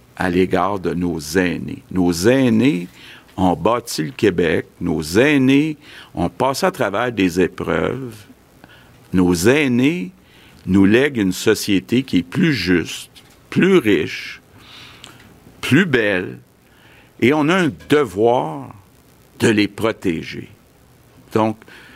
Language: French